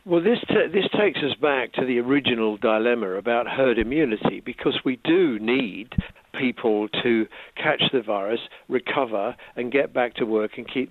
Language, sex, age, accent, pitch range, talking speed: English, male, 60-79, British, 110-125 Hz, 170 wpm